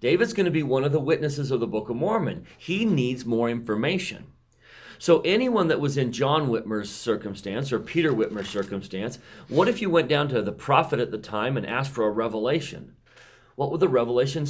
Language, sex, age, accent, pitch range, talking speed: English, male, 40-59, American, 110-145 Hz, 205 wpm